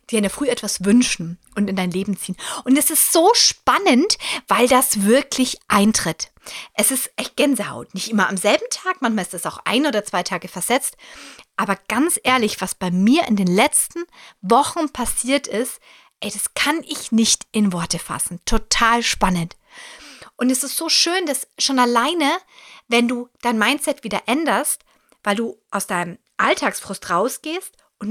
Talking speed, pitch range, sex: 170 wpm, 205-275 Hz, female